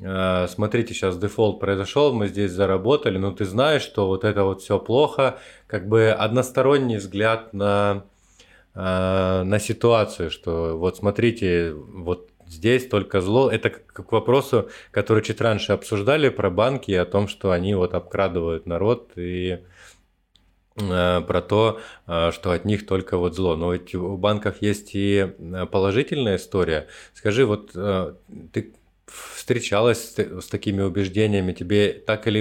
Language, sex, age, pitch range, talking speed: Russian, male, 20-39, 90-105 Hz, 135 wpm